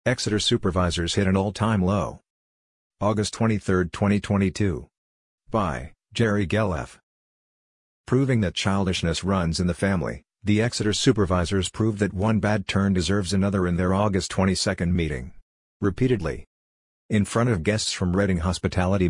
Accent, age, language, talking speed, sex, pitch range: American, 50-69, English, 130 wpm, male, 90-105 Hz